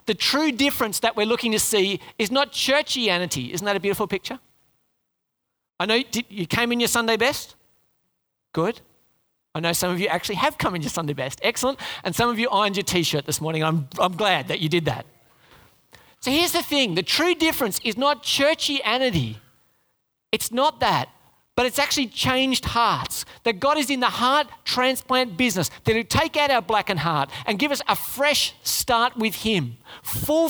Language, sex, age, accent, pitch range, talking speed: English, male, 40-59, Australian, 165-260 Hz, 190 wpm